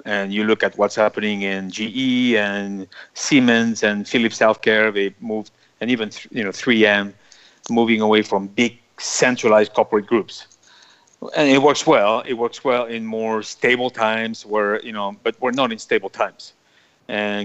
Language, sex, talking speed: English, male, 170 wpm